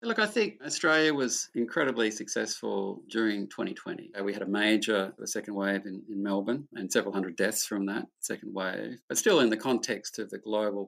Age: 50-69